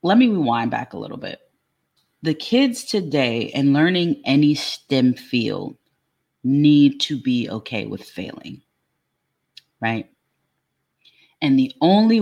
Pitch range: 135-165 Hz